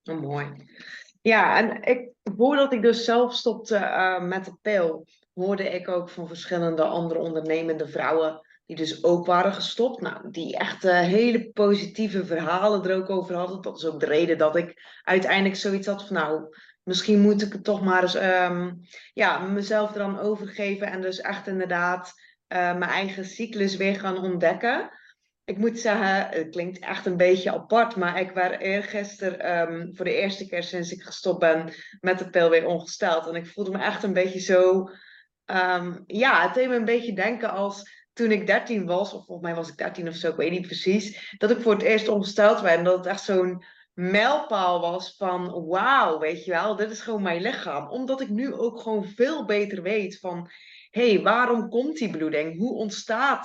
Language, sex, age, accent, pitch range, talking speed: English, female, 20-39, Dutch, 175-210 Hz, 190 wpm